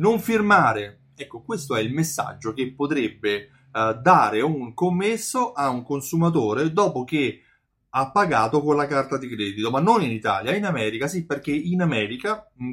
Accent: native